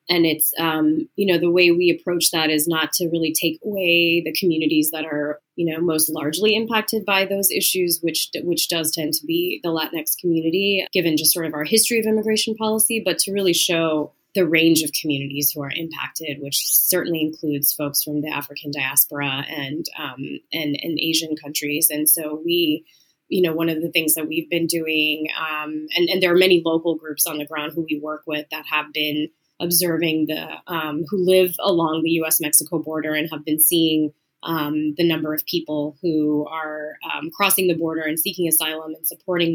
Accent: American